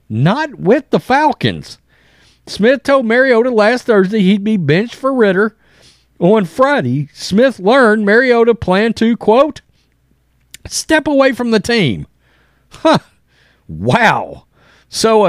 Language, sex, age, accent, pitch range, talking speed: English, male, 40-59, American, 160-235 Hz, 120 wpm